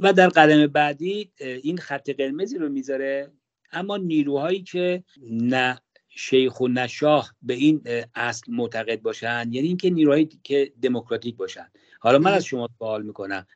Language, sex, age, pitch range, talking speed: English, male, 50-69, 125-170 Hz, 155 wpm